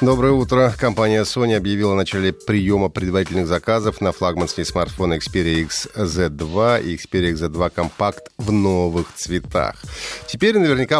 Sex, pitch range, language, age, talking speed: male, 90-115 Hz, Russian, 30-49, 130 wpm